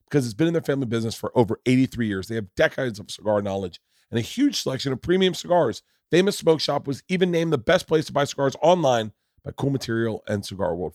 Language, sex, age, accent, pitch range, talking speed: English, male, 40-59, American, 110-145 Hz, 235 wpm